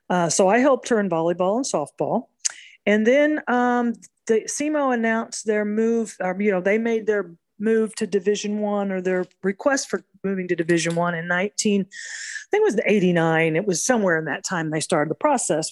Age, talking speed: 40-59, 200 wpm